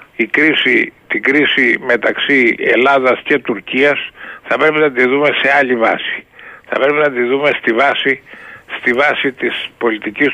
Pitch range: 125-150 Hz